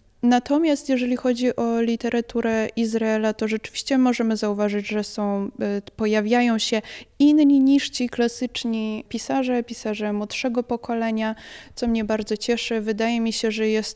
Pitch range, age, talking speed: 205-235 Hz, 20-39, 135 wpm